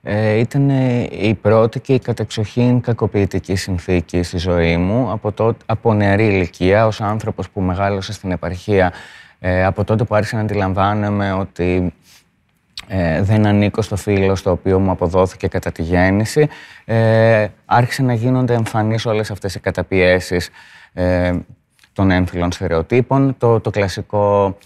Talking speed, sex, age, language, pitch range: 130 wpm, male, 30-49, Greek, 95-120 Hz